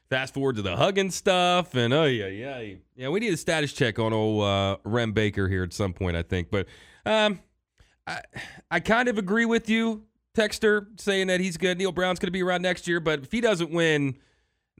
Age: 30-49